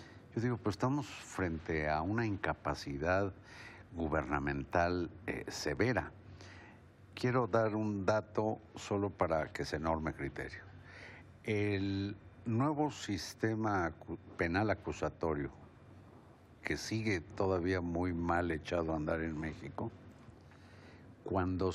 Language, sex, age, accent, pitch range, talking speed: Spanish, male, 60-79, Mexican, 90-115 Hz, 100 wpm